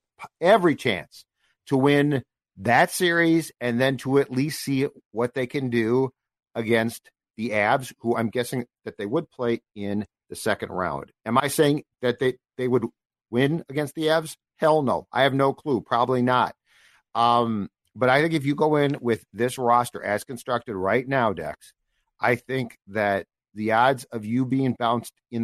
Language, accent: English, American